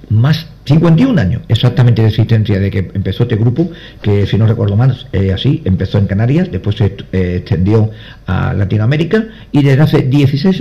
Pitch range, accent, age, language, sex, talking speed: 100-125 Hz, Spanish, 50-69, Spanish, male, 180 wpm